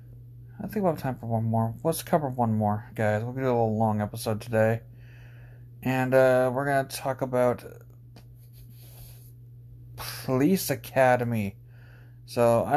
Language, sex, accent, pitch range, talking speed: English, male, American, 120-135 Hz, 140 wpm